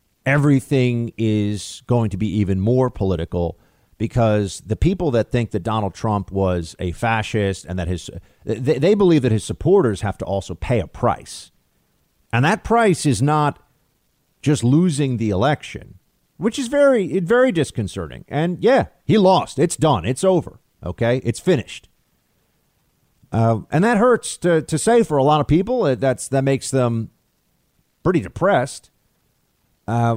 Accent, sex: American, male